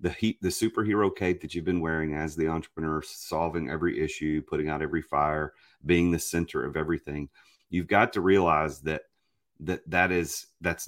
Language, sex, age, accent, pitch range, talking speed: English, male, 40-59, American, 80-100 Hz, 180 wpm